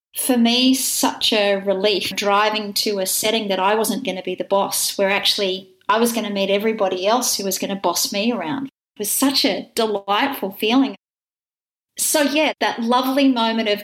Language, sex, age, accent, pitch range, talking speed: English, female, 30-49, Australian, 195-235 Hz, 195 wpm